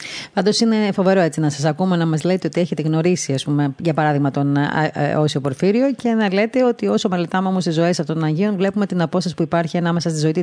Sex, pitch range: female, 135-185 Hz